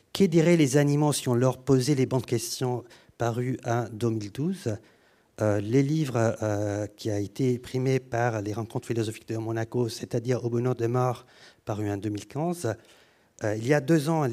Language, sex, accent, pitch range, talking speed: French, male, French, 105-135 Hz, 175 wpm